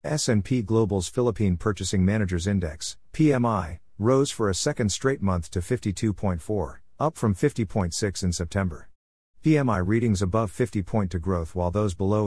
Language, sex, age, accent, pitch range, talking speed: English, male, 50-69, American, 90-115 Hz, 145 wpm